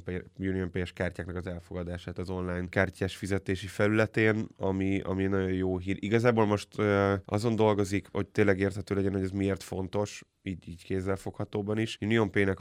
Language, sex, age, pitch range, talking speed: Hungarian, male, 20-39, 95-100 Hz, 155 wpm